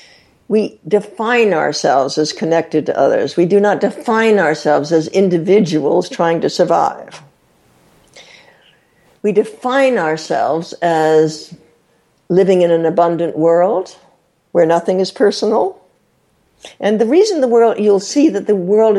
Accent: American